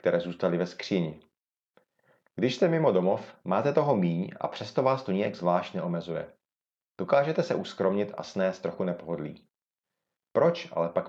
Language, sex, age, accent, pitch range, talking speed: Czech, male, 40-59, native, 95-120 Hz, 150 wpm